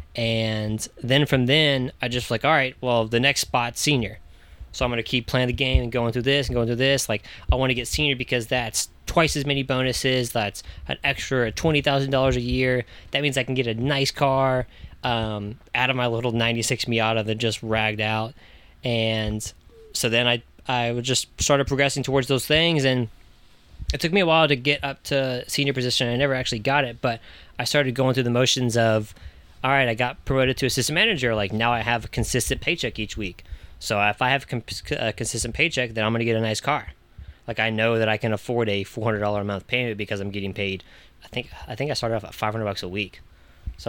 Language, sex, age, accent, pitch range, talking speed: English, male, 10-29, American, 105-130 Hz, 230 wpm